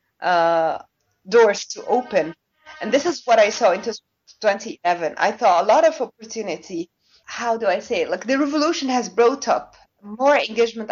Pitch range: 190-250 Hz